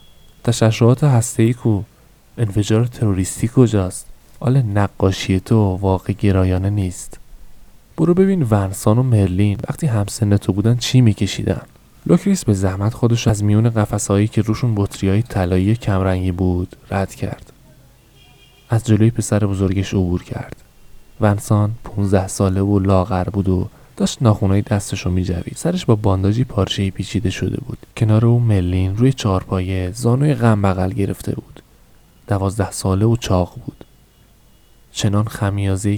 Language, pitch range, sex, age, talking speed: Persian, 95-115 Hz, male, 20-39, 135 wpm